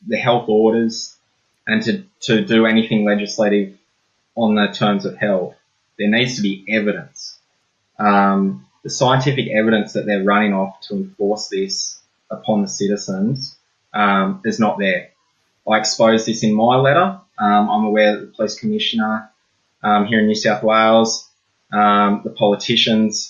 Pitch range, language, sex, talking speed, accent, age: 100-115 Hz, English, male, 150 wpm, Australian, 20-39